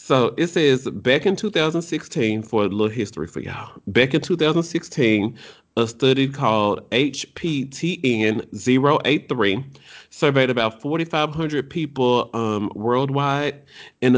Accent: American